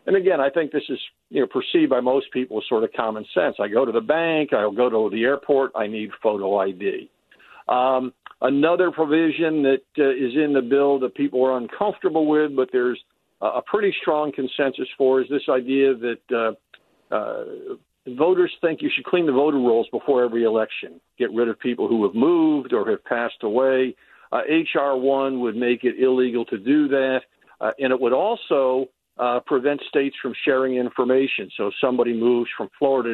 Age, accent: 60-79, American